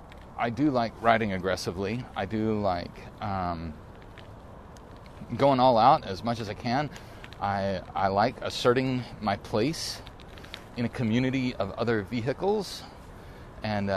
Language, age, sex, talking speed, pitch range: English, 30-49, male, 130 wpm, 100-125 Hz